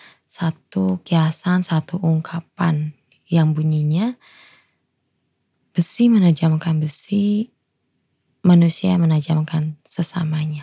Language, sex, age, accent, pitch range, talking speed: Indonesian, female, 20-39, native, 155-190 Hz, 70 wpm